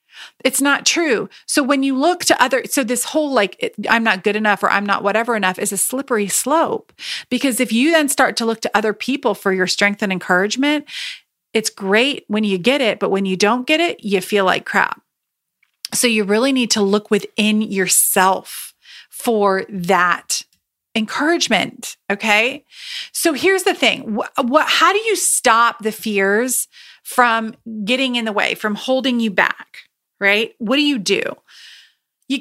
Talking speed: 175 wpm